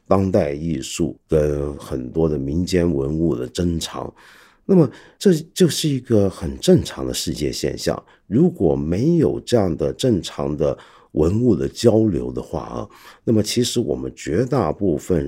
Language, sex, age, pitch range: Chinese, male, 50-69, 75-110 Hz